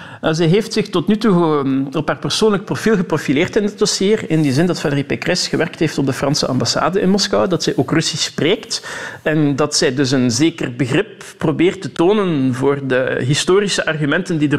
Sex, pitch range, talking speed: male, 140-170 Hz, 200 wpm